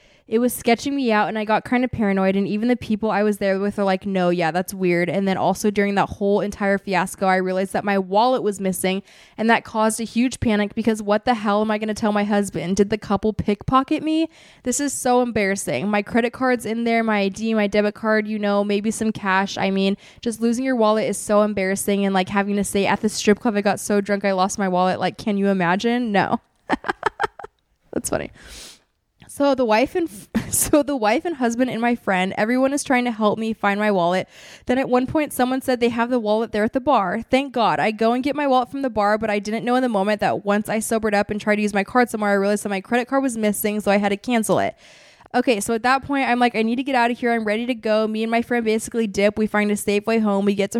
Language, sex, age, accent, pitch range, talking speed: English, female, 20-39, American, 200-240 Hz, 265 wpm